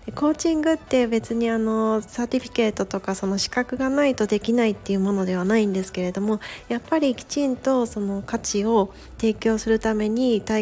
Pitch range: 195-240 Hz